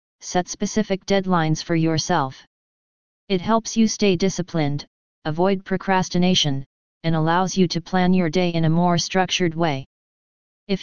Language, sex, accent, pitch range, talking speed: English, female, American, 165-195 Hz, 140 wpm